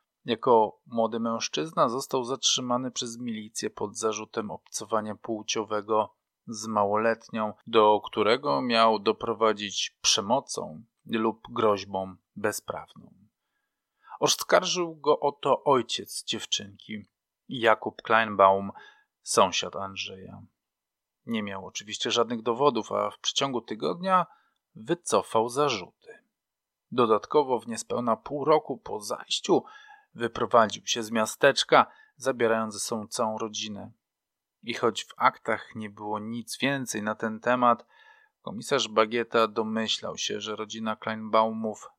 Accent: native